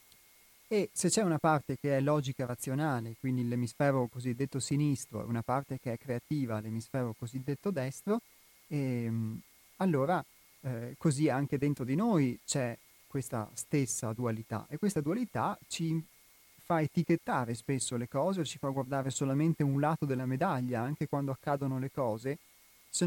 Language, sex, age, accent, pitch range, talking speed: Italian, male, 30-49, native, 125-150 Hz, 150 wpm